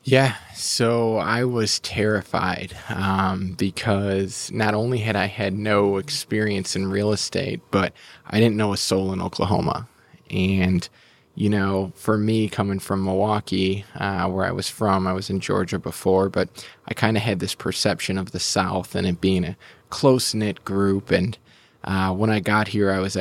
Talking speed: 175 wpm